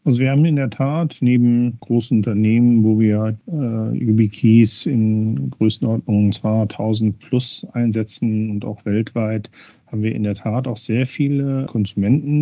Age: 50-69